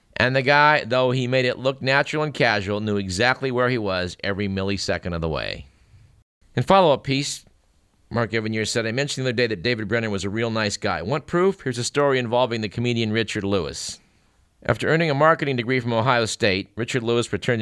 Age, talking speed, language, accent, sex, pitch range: 50-69, 210 wpm, English, American, male, 105-130 Hz